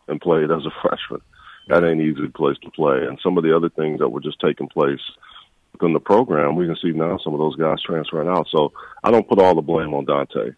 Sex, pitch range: male, 75-90 Hz